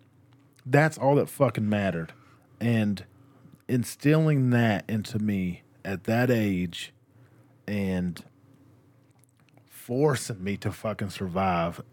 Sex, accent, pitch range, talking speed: male, American, 120-145 Hz, 95 wpm